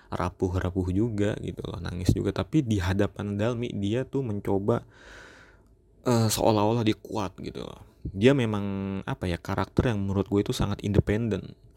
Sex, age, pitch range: male, 20-39, 100-125 Hz